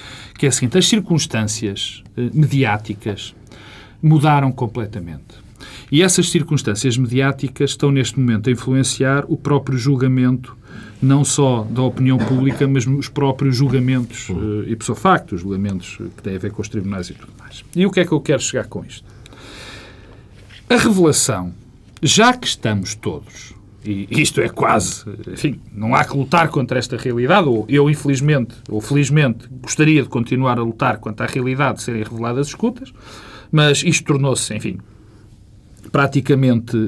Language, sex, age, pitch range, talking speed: Portuguese, male, 40-59, 110-155 Hz, 155 wpm